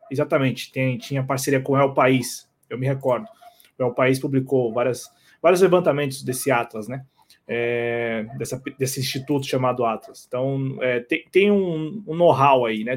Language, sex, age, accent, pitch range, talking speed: Portuguese, male, 20-39, Brazilian, 130-175 Hz, 165 wpm